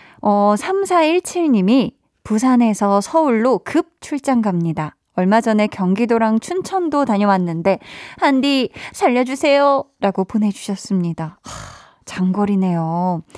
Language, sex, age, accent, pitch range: Korean, female, 20-39, native, 200-290 Hz